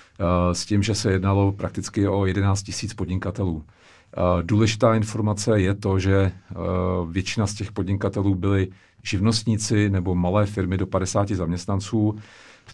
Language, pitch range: Czech, 95-110 Hz